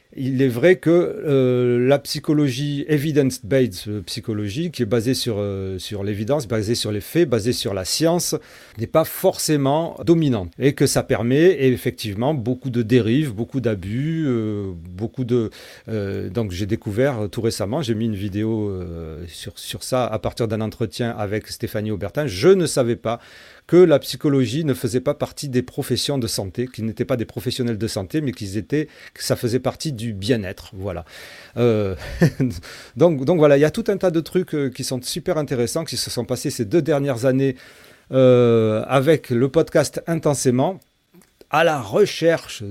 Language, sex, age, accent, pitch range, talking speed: French, male, 40-59, French, 115-150 Hz, 180 wpm